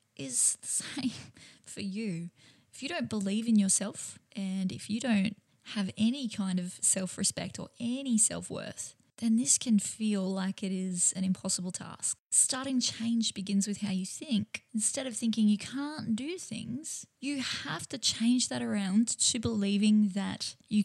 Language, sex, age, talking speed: English, female, 20-39, 165 wpm